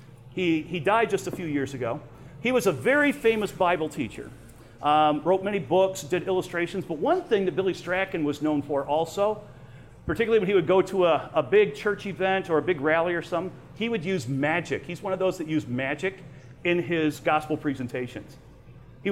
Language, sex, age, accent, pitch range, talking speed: English, male, 40-59, American, 150-190 Hz, 200 wpm